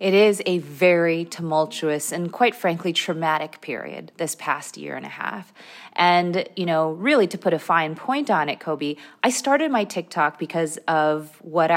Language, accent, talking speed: English, American, 180 wpm